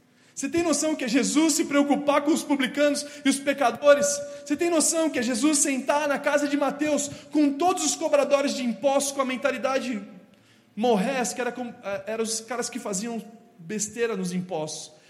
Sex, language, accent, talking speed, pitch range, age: male, Portuguese, Brazilian, 170 wpm, 175-260 Hz, 20-39